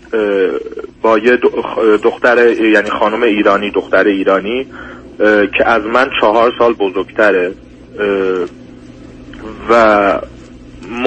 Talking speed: 85 wpm